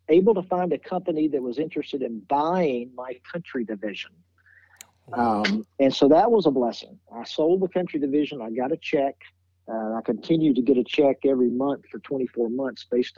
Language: English